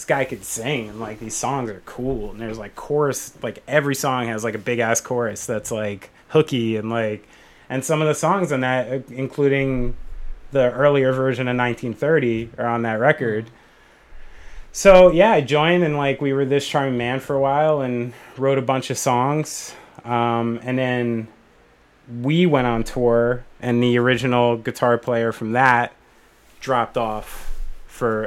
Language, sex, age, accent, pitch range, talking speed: English, male, 30-49, American, 110-130 Hz, 175 wpm